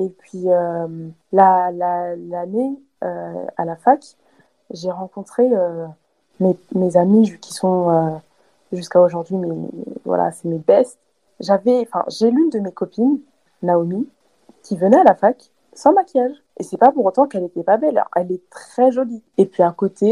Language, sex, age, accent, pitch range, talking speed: French, female, 20-39, French, 180-235 Hz, 175 wpm